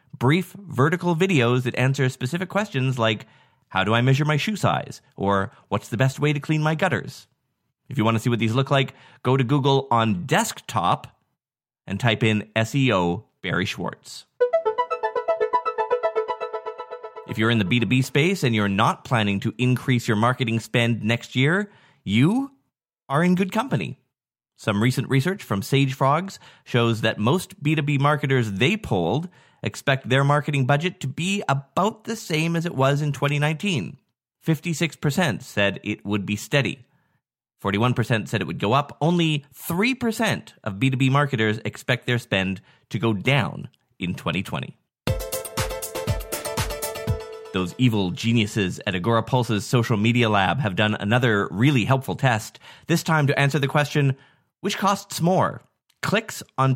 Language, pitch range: English, 115-160 Hz